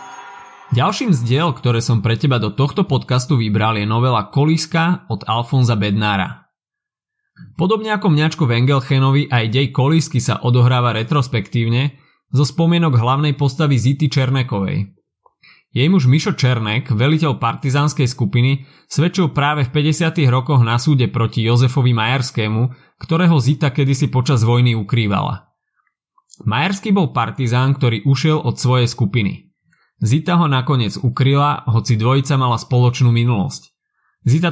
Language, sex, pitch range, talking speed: Slovak, male, 115-145 Hz, 125 wpm